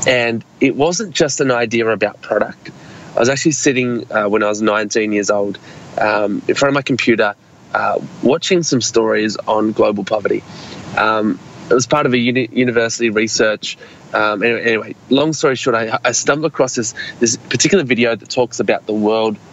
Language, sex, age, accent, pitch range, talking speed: English, male, 20-39, Australian, 110-130 Hz, 180 wpm